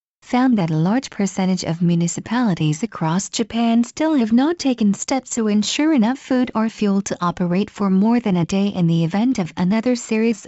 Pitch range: 185-235 Hz